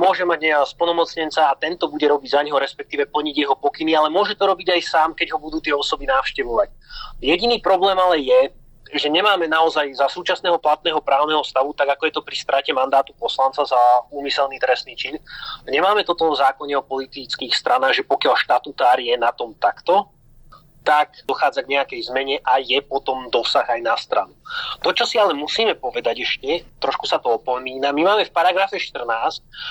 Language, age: Slovak, 30-49